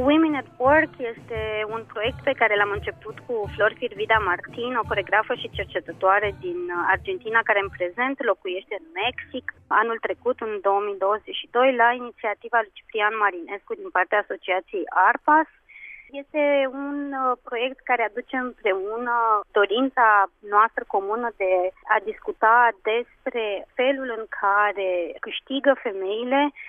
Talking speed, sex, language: 130 wpm, female, Romanian